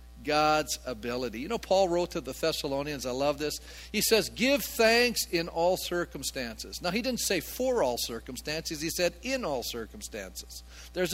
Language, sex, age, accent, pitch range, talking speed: English, male, 50-69, American, 160-240 Hz, 170 wpm